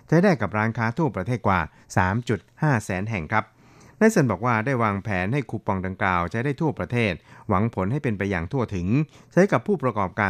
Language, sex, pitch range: Thai, male, 100-120 Hz